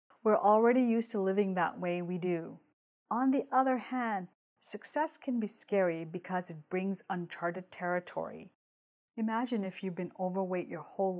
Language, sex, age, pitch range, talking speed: English, female, 40-59, 170-220 Hz, 155 wpm